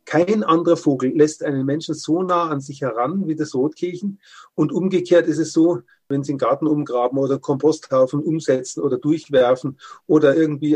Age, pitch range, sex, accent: 40-59, 140-165 Hz, male, German